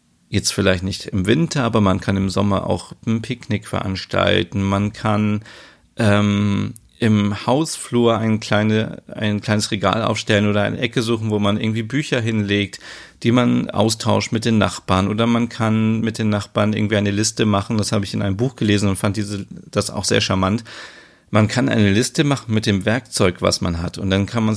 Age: 40-59